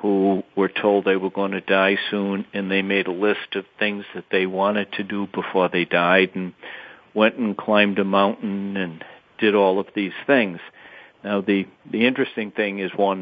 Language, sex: English, male